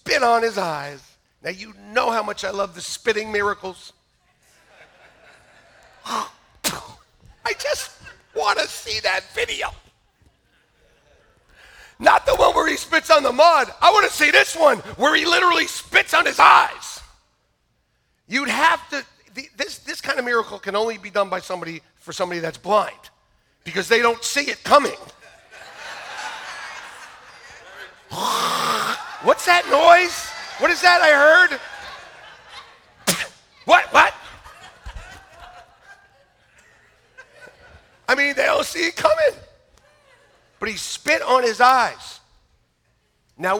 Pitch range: 185-290 Hz